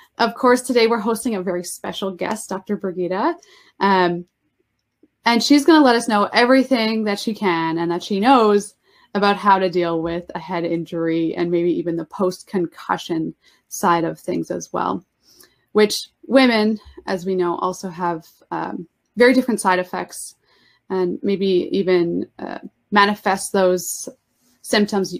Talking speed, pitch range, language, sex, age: 155 wpm, 180-230 Hz, English, female, 20-39